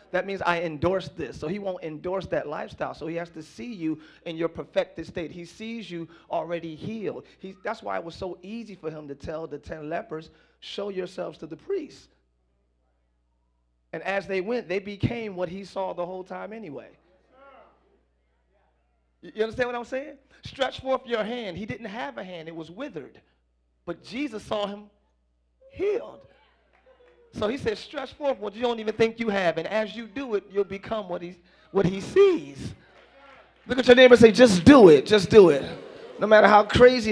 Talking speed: 190 wpm